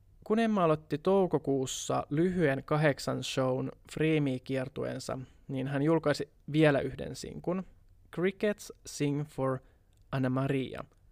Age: 20-39